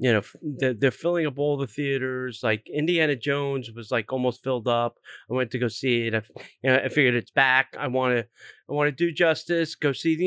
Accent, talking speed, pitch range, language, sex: American, 235 wpm, 125-170 Hz, English, male